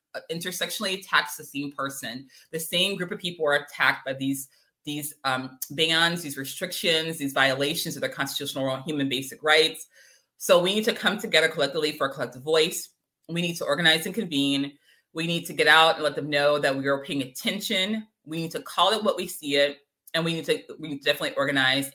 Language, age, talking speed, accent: English, 20-39, 210 wpm, American